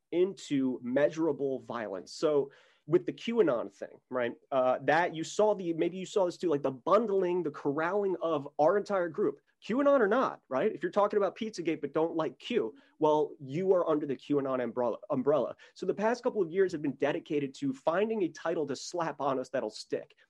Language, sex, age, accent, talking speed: English, male, 30-49, American, 200 wpm